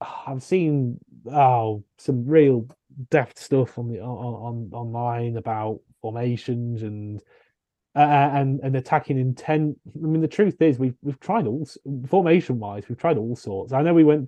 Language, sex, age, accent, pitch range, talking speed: English, male, 30-49, British, 125-145 Hz, 165 wpm